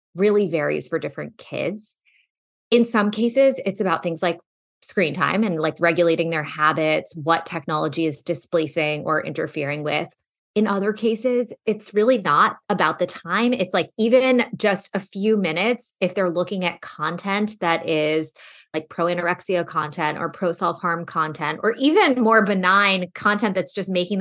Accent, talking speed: American, 155 wpm